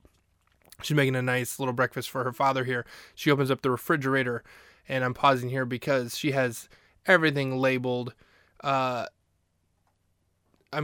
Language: English